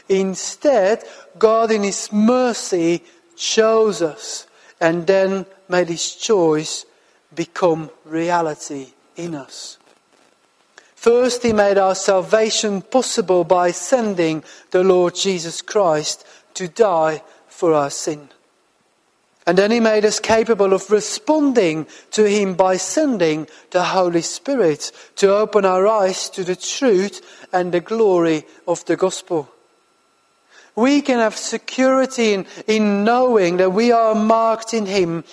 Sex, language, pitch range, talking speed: male, English, 180-220 Hz, 125 wpm